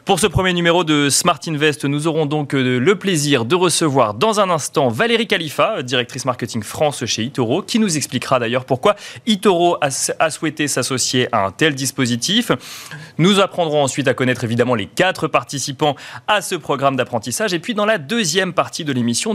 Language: French